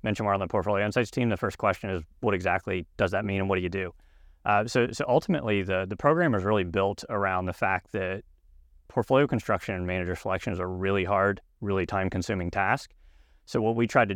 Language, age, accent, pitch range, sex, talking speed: English, 30-49, American, 95-110 Hz, male, 215 wpm